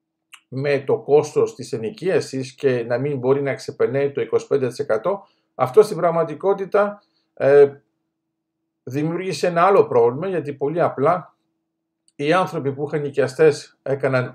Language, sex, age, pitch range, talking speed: Greek, male, 50-69, 145-210 Hz, 125 wpm